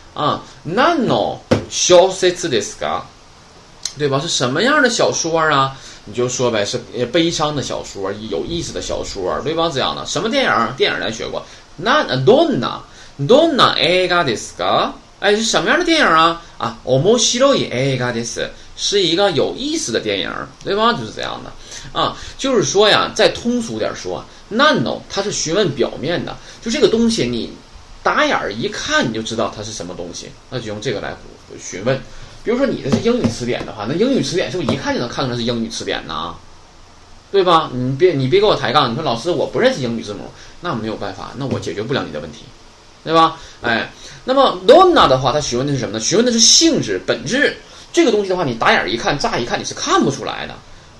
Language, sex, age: Chinese, male, 20-39